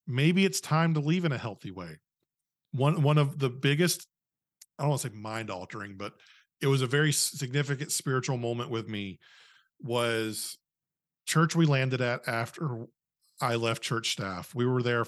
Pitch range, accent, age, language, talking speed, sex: 115-145 Hz, American, 40-59, English, 175 wpm, male